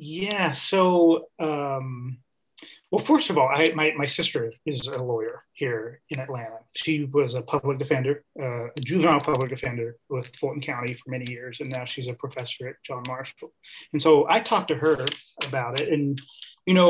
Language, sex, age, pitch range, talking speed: English, male, 30-49, 135-165 Hz, 180 wpm